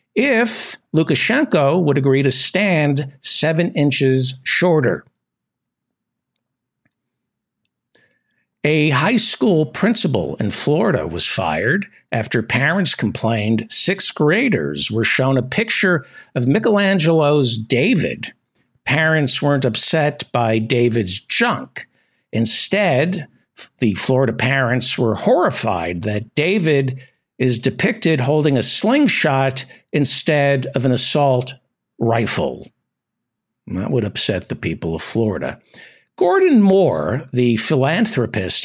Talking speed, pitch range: 100 wpm, 115-150 Hz